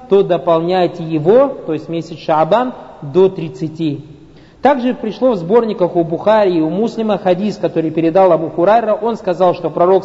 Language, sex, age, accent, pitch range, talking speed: Russian, male, 50-69, native, 170-215 Hz, 155 wpm